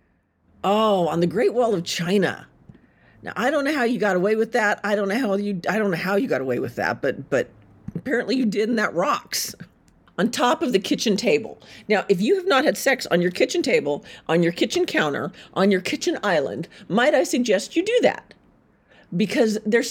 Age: 50-69